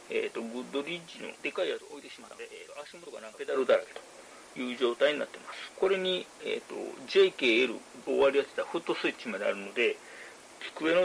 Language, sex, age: Japanese, male, 40-59